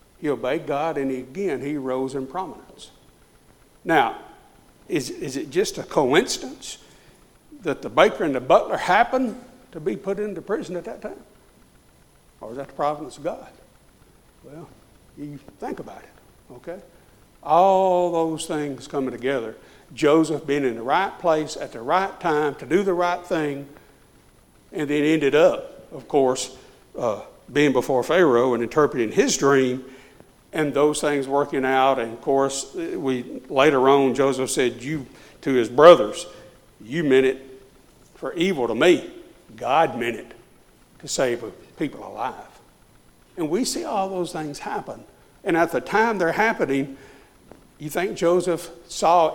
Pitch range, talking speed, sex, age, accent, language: 135-190 Hz, 155 wpm, male, 60-79, American, English